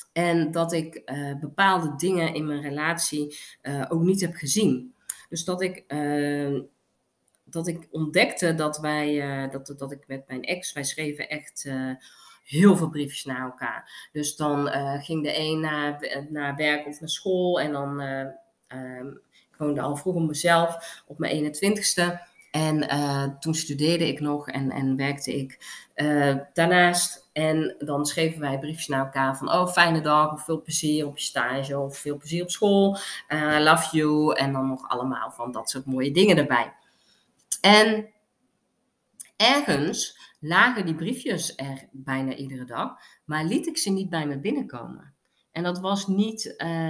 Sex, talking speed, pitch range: female, 160 wpm, 140-170 Hz